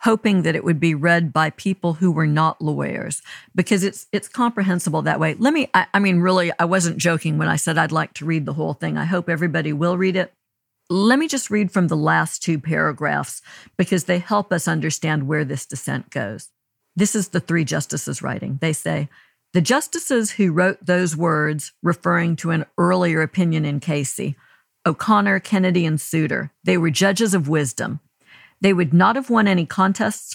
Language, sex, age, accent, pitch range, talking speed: English, female, 50-69, American, 160-205 Hz, 195 wpm